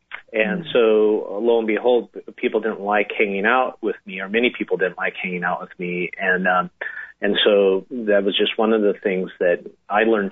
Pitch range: 100-125 Hz